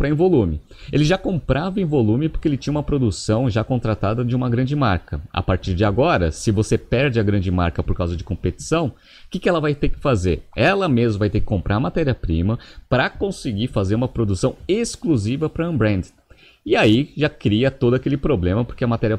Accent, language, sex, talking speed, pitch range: Brazilian, Portuguese, male, 210 wpm, 100-140 Hz